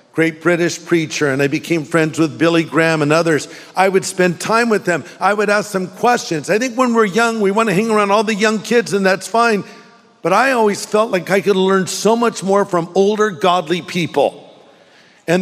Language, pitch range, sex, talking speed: English, 150-200 Hz, male, 220 wpm